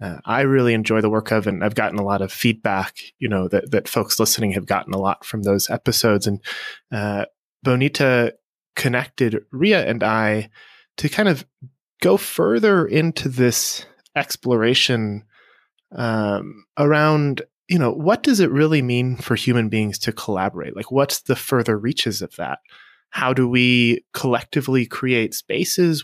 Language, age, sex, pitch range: English, 20-39, male, 110-145 Hz